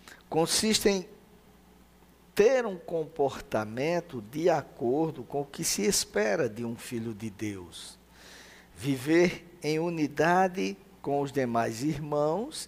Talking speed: 115 wpm